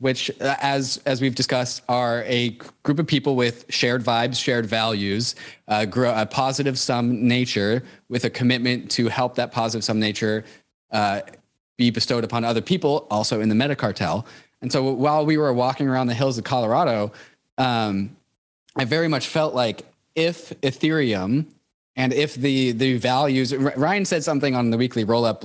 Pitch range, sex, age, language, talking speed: 115-140 Hz, male, 20-39, English, 170 wpm